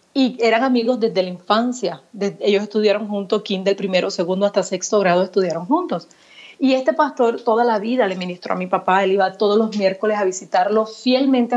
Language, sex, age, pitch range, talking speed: Spanish, female, 30-49, 190-230 Hz, 195 wpm